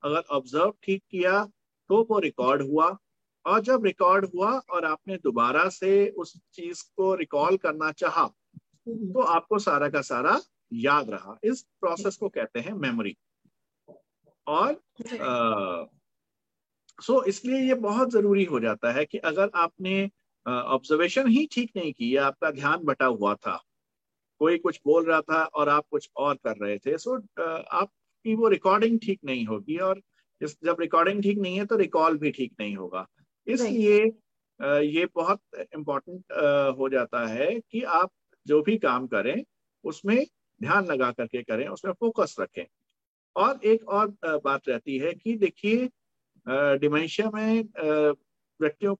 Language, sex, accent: Hindi, male, native